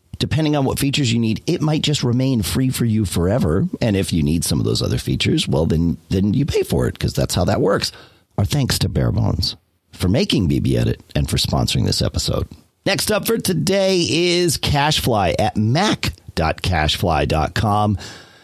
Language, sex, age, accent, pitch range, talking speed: English, male, 50-69, American, 90-145 Hz, 180 wpm